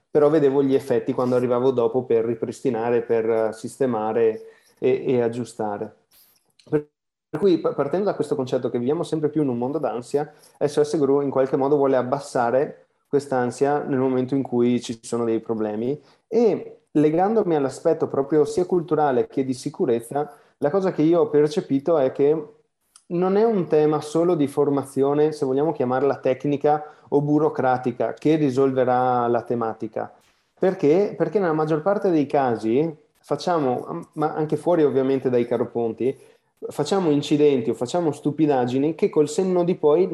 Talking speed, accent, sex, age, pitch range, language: 150 wpm, native, male, 30-49, 130-155 Hz, Italian